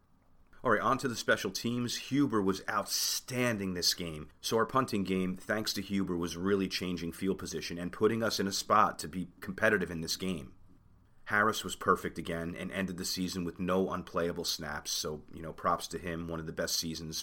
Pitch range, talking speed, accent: 85-100 Hz, 205 wpm, American